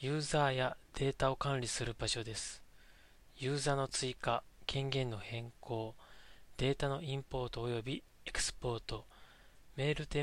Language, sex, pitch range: Japanese, male, 120-145 Hz